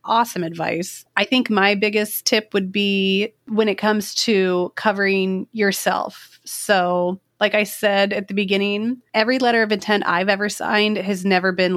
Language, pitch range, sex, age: English, 185-210 Hz, female, 30-49